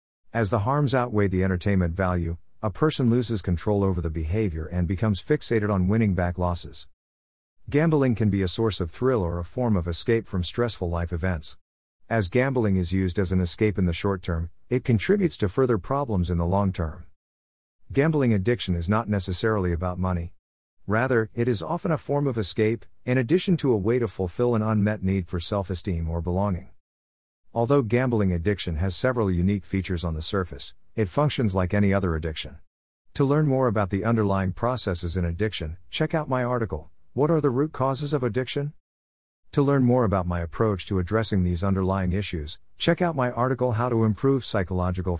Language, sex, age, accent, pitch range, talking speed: English, male, 50-69, American, 85-120 Hz, 185 wpm